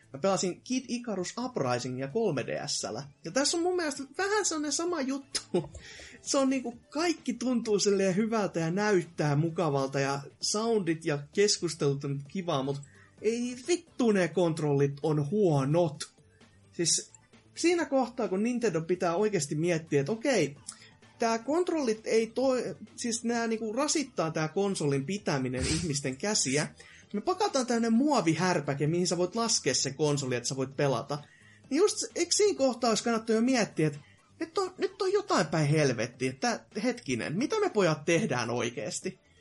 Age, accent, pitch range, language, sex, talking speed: 20-39, native, 145-230 Hz, Finnish, male, 150 wpm